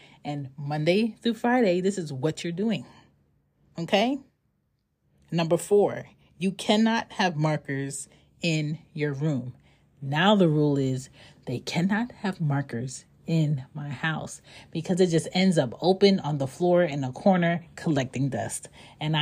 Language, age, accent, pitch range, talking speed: English, 30-49, American, 135-180 Hz, 140 wpm